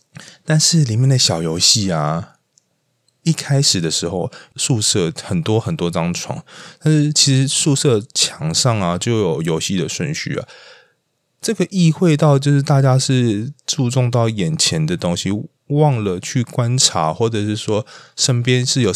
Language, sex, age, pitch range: Chinese, male, 20-39, 100-145 Hz